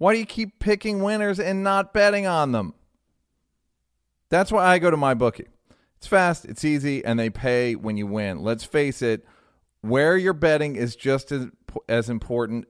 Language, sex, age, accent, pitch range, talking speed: English, male, 40-59, American, 115-150 Hz, 185 wpm